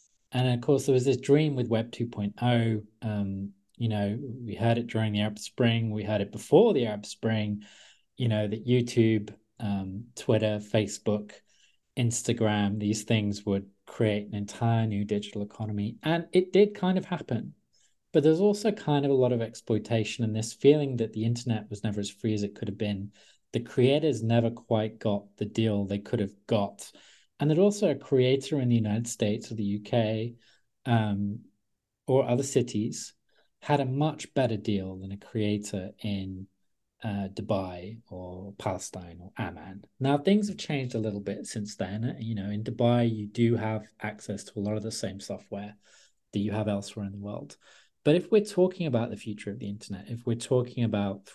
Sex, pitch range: male, 105-120 Hz